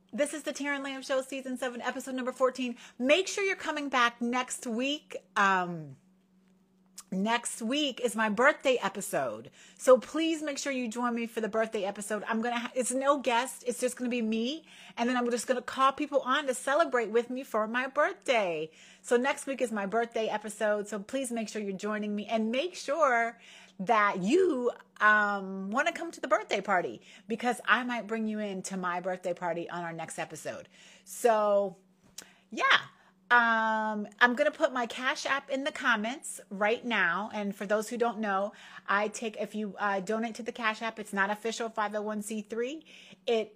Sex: female